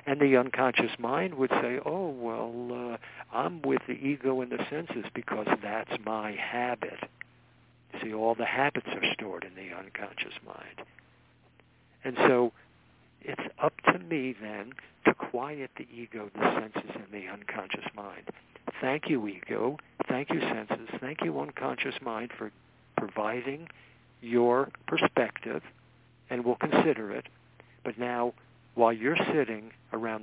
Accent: American